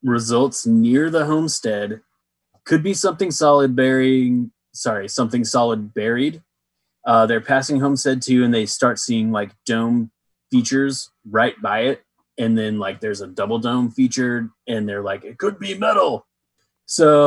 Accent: American